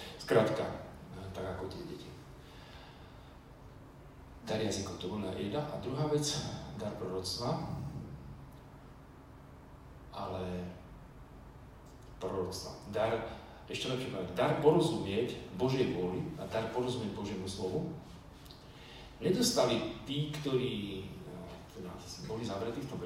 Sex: male